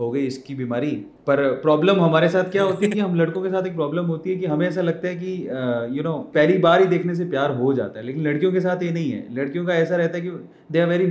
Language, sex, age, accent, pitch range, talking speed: Hindi, male, 30-49, native, 140-180 Hz, 290 wpm